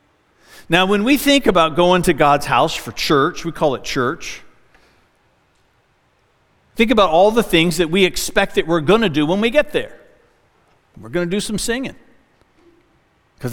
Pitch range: 190-275 Hz